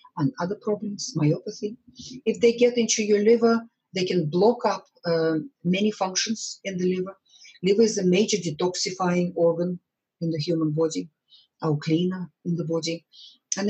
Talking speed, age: 160 wpm, 40-59